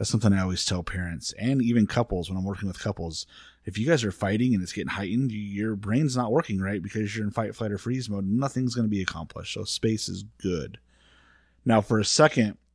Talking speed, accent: 230 wpm, American